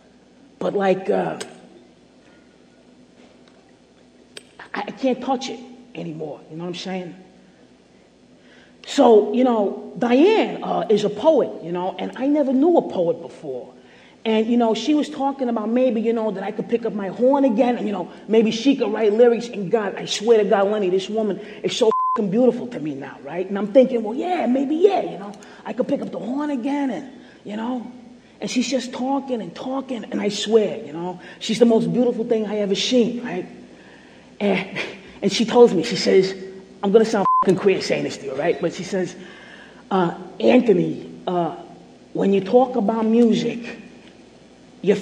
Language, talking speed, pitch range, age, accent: English, 190 wpm, 205-255 Hz, 30-49, American